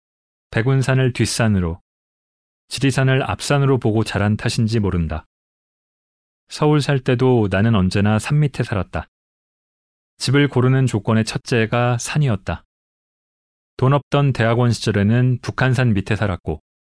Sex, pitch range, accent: male, 95-130 Hz, native